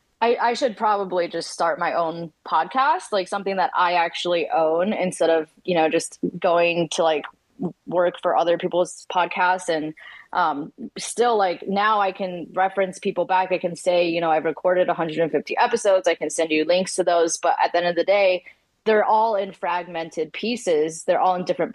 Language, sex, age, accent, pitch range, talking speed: English, female, 20-39, American, 170-210 Hz, 195 wpm